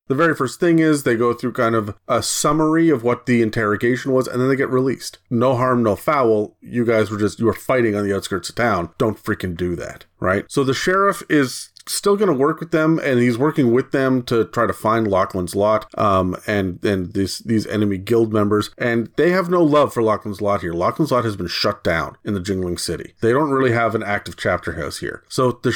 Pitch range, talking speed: 105-135 Hz, 235 wpm